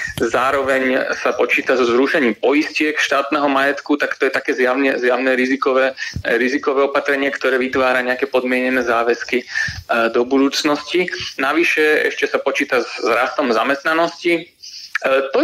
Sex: male